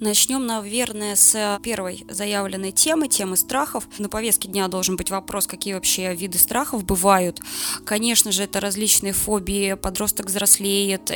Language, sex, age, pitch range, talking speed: Russian, female, 20-39, 195-230 Hz, 140 wpm